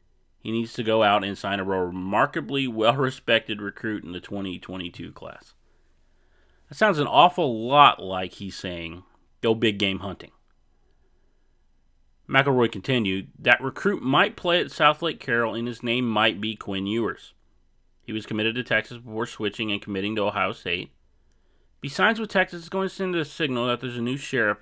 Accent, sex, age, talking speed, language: American, male, 30-49, 170 wpm, English